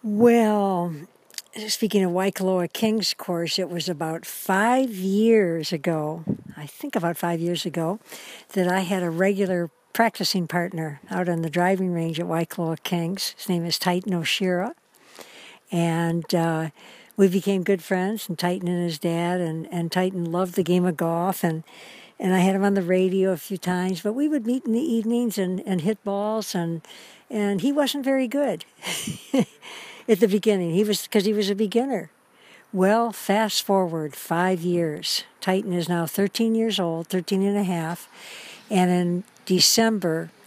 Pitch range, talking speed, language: 175-205 Hz, 170 wpm, English